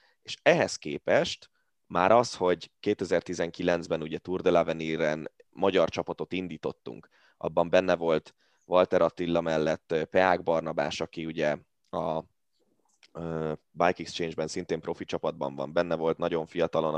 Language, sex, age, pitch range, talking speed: Hungarian, male, 20-39, 80-90 Hz, 130 wpm